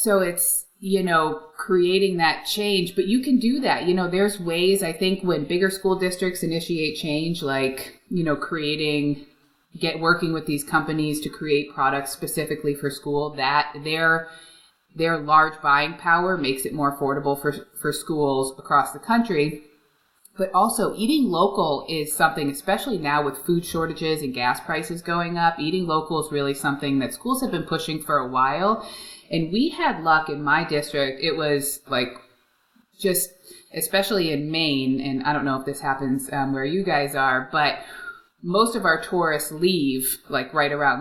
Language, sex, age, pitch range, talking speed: English, female, 30-49, 145-175 Hz, 175 wpm